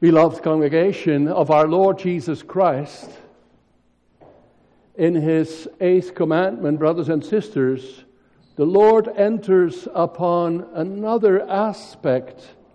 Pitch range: 130-205 Hz